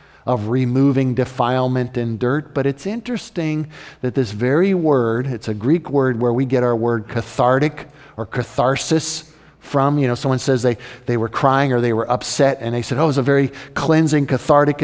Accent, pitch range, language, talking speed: American, 120-155 Hz, English, 190 wpm